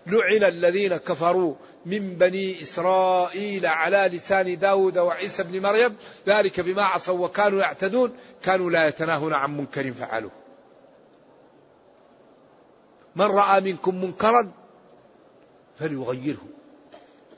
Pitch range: 175-215 Hz